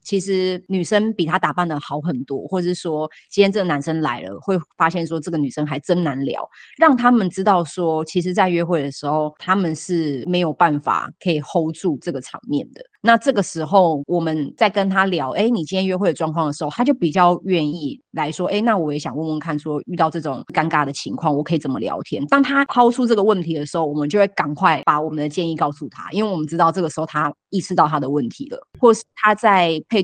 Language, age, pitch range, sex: Chinese, 30-49, 155-195 Hz, female